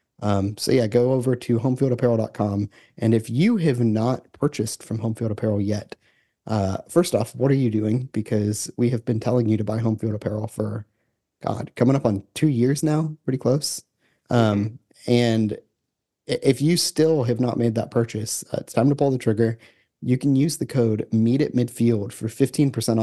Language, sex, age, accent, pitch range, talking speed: English, male, 30-49, American, 105-125 Hz, 180 wpm